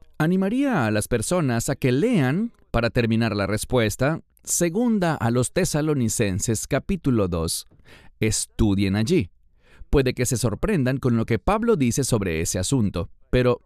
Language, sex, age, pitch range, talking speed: English, male, 30-49, 95-145 Hz, 140 wpm